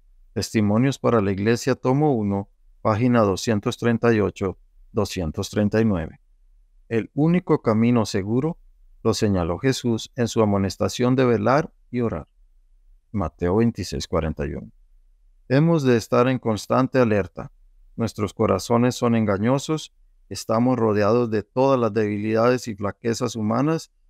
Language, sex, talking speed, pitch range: Spanish, male, 110 wpm, 95-125 Hz